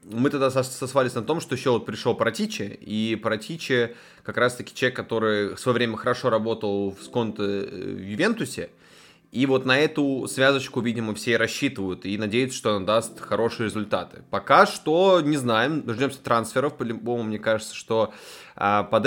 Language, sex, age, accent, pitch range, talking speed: Russian, male, 20-39, native, 110-135 Hz, 155 wpm